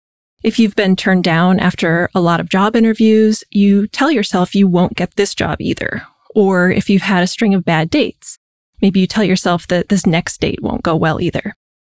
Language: English